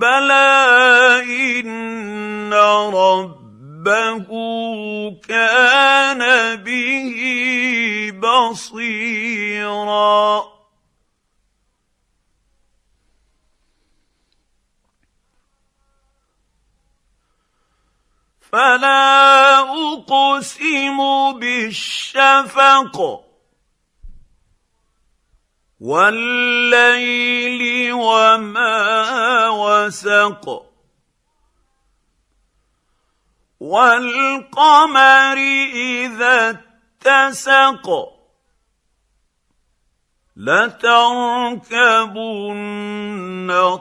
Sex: male